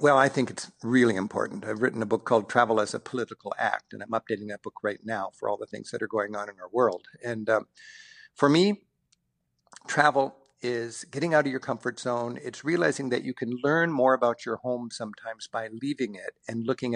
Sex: male